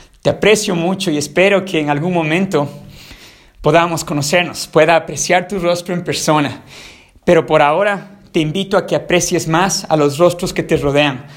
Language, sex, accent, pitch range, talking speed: Spanish, male, Mexican, 160-190 Hz, 170 wpm